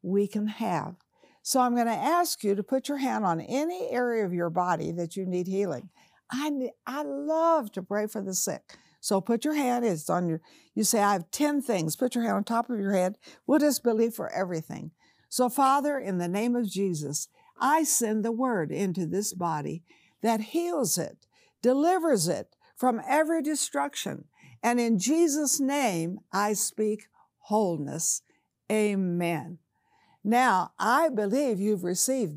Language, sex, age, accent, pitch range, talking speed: English, female, 60-79, American, 190-275 Hz, 170 wpm